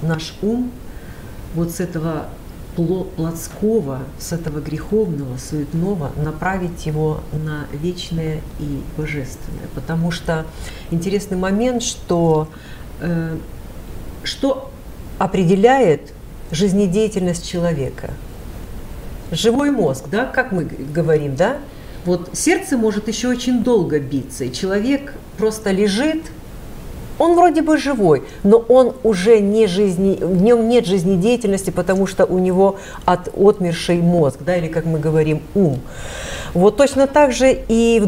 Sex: female